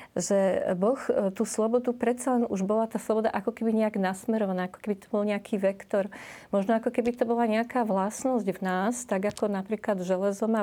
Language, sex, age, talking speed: Slovak, female, 40-59, 190 wpm